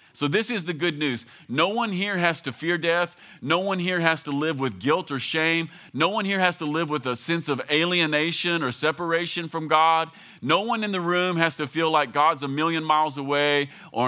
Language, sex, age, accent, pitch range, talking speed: English, male, 40-59, American, 130-165 Hz, 225 wpm